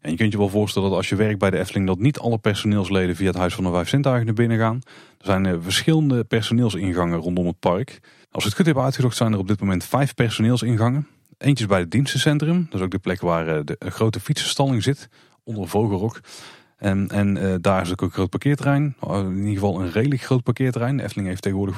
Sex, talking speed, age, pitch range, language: male, 225 wpm, 30-49, 95-125 Hz, Dutch